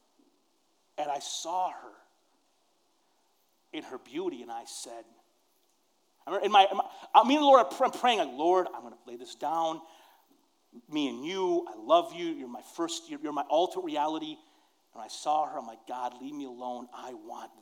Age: 40-59